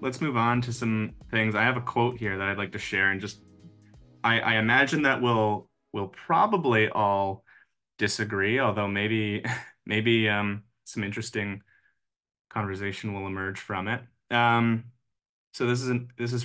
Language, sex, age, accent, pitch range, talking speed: English, male, 20-39, American, 100-115 Hz, 165 wpm